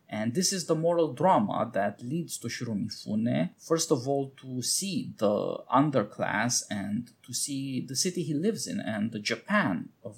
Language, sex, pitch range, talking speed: English, male, 115-150 Hz, 170 wpm